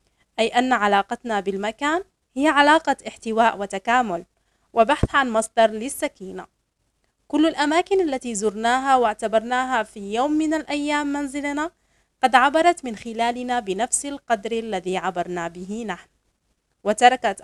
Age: 30-49